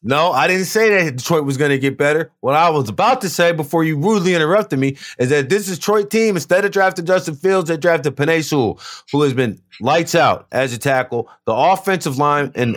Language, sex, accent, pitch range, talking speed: English, male, American, 120-165 Hz, 220 wpm